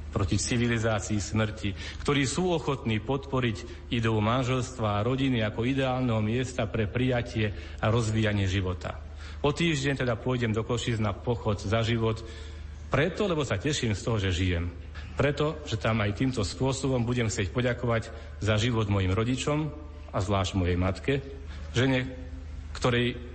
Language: Slovak